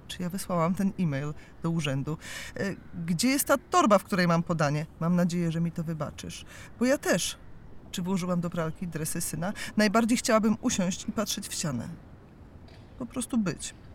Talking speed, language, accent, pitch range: 170 wpm, Polish, native, 165-210 Hz